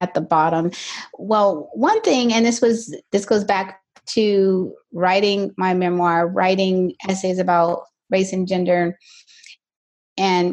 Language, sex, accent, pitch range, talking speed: English, female, American, 175-210 Hz, 130 wpm